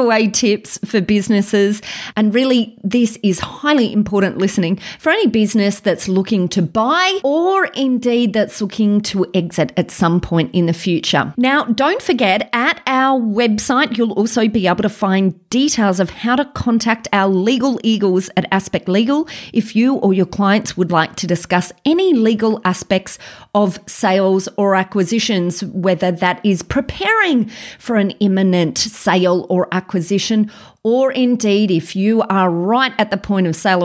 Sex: female